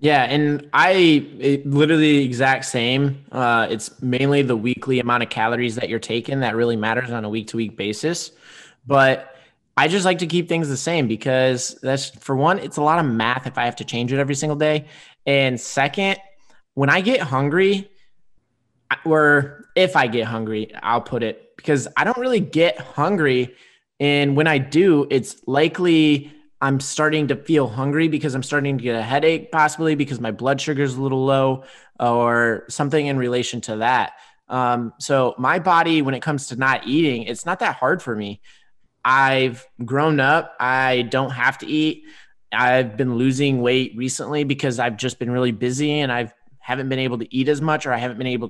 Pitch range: 125-150 Hz